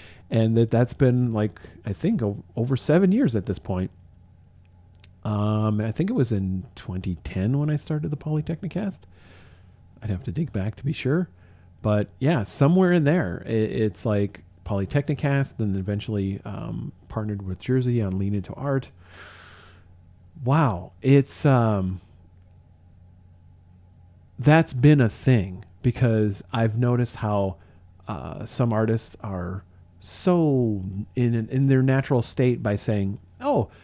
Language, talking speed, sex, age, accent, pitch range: English, 135 wpm, male, 40-59, American, 95-135 Hz